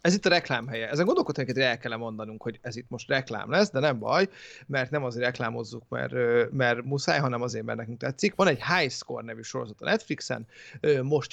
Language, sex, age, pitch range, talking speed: Hungarian, male, 30-49, 125-155 Hz, 205 wpm